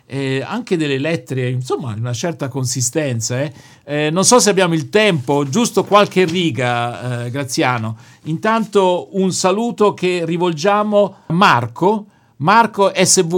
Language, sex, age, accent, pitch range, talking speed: Italian, male, 50-69, native, 145-200 Hz, 135 wpm